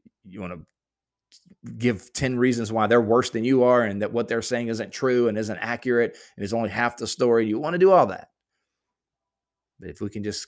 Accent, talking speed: American, 225 wpm